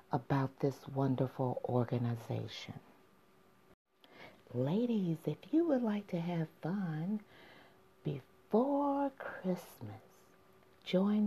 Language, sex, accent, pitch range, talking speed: English, female, American, 135-225 Hz, 80 wpm